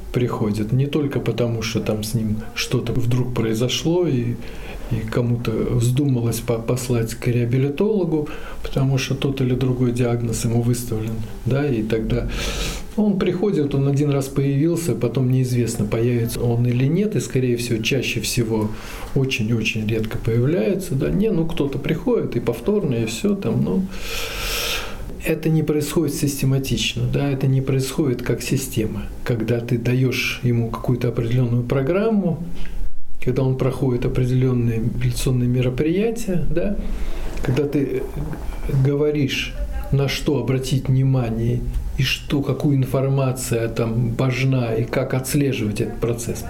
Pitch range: 120-145 Hz